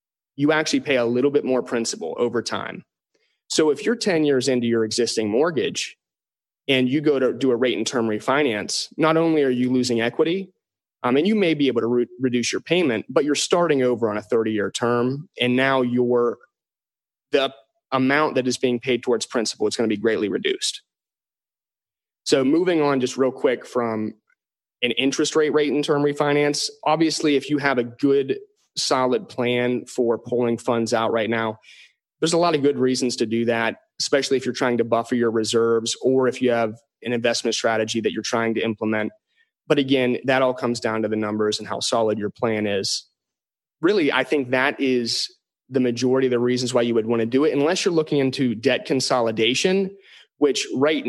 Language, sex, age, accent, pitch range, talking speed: English, male, 30-49, American, 115-145 Hz, 195 wpm